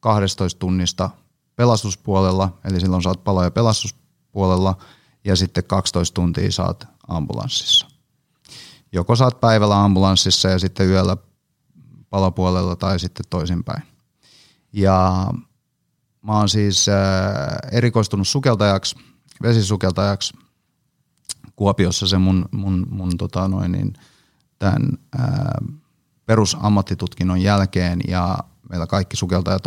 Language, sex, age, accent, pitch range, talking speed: Finnish, male, 30-49, native, 95-115 Hz, 95 wpm